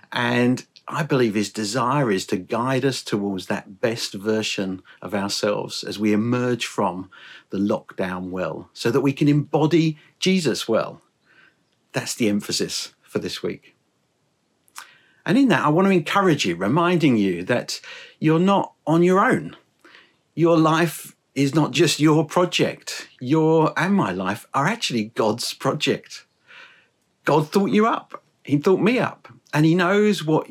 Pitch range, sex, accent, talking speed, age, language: 110-170 Hz, male, British, 150 wpm, 50-69, English